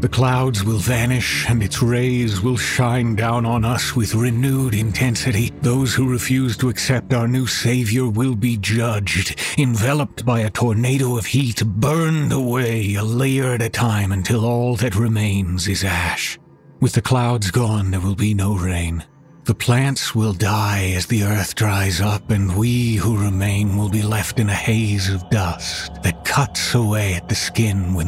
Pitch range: 100-125 Hz